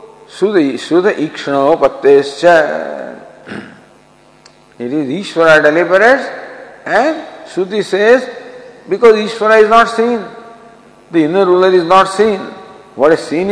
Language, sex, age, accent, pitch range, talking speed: English, male, 50-69, Indian, 130-195 Hz, 105 wpm